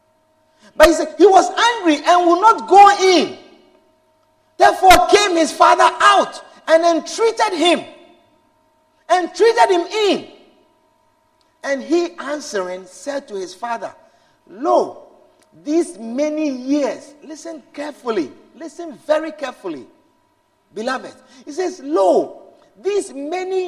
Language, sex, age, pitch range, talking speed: English, male, 50-69, 310-350 Hz, 110 wpm